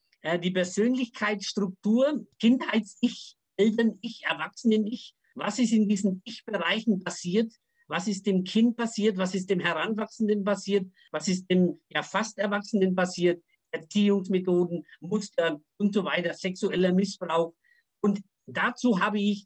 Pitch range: 185-230 Hz